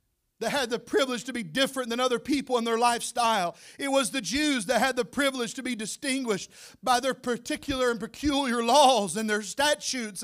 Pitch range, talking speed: 220-285 Hz, 195 wpm